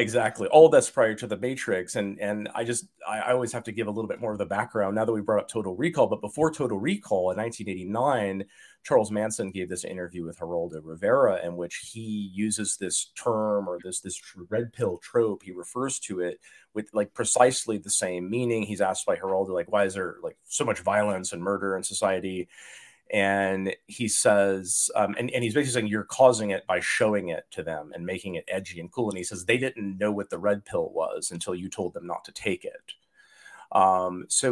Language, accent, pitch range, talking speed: English, American, 95-130 Hz, 220 wpm